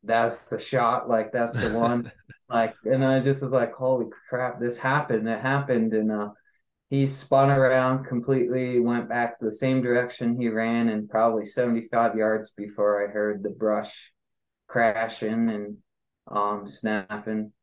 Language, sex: English, male